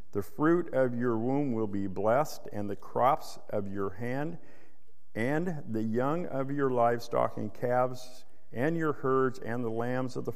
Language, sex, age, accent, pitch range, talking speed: English, male, 50-69, American, 105-140 Hz, 175 wpm